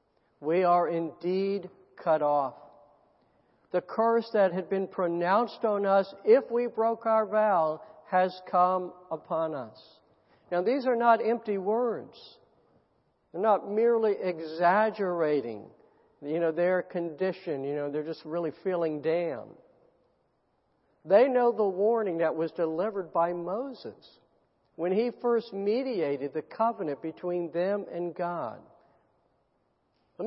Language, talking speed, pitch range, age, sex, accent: English, 115 wpm, 160-200 Hz, 60-79, male, American